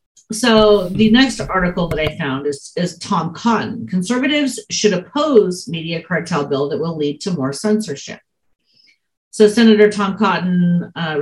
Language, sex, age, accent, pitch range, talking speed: English, female, 40-59, American, 165-220 Hz, 150 wpm